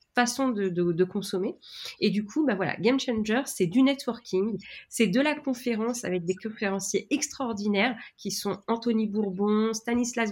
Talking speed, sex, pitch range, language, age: 165 wpm, female, 175-220 Hz, French, 30-49